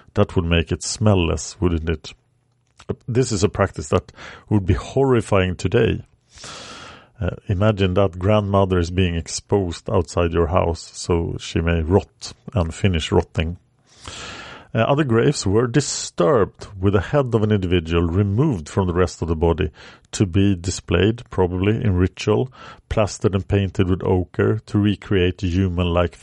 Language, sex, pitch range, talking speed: English, male, 90-110 Hz, 150 wpm